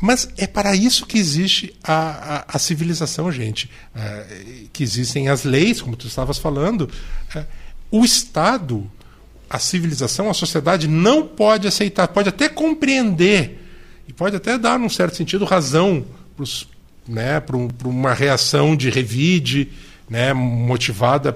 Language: Portuguese